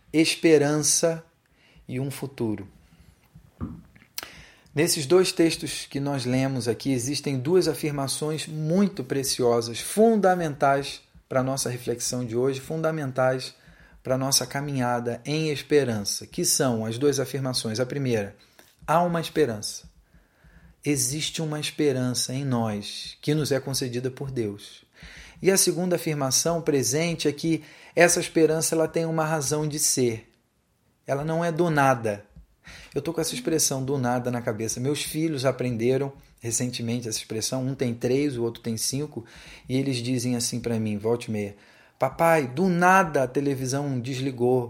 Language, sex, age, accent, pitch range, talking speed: Portuguese, male, 40-59, Brazilian, 120-155 Hz, 140 wpm